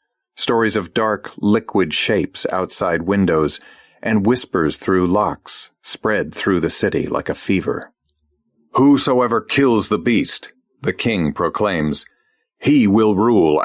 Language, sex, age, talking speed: English, male, 50-69, 125 wpm